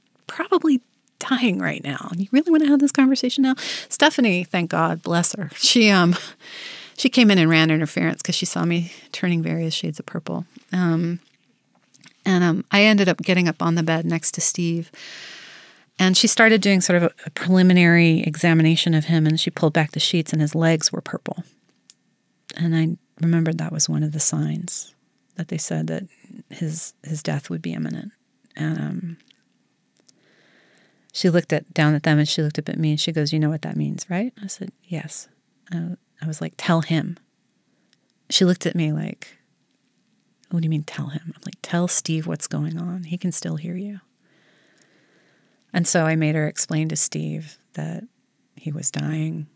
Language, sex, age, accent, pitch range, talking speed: English, female, 30-49, American, 155-185 Hz, 190 wpm